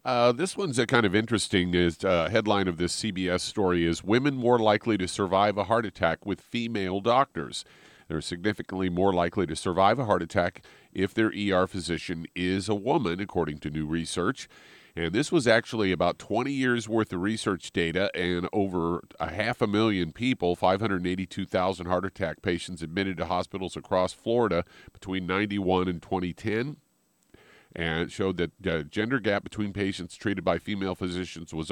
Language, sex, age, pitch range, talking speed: English, male, 40-59, 90-105 Hz, 170 wpm